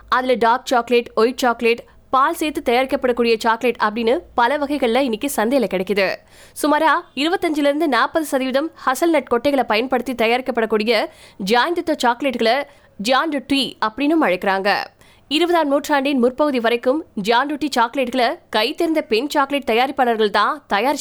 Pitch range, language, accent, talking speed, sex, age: 230-285 Hz, Tamil, native, 70 wpm, female, 20-39